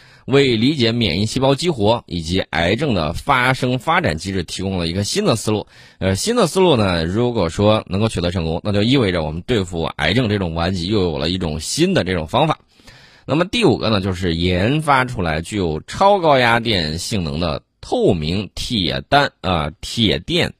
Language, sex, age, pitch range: Chinese, male, 20-39, 85-120 Hz